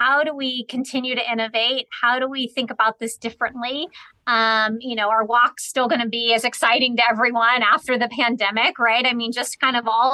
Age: 30-49